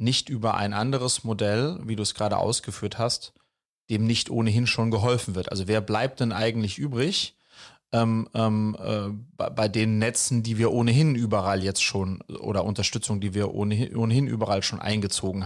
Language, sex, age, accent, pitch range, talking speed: German, male, 30-49, German, 105-120 Hz, 175 wpm